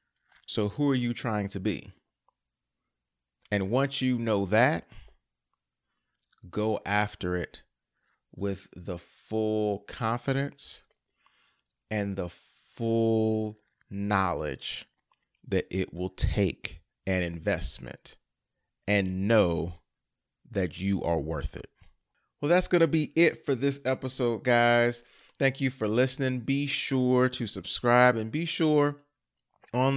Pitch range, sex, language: 100-130 Hz, male, English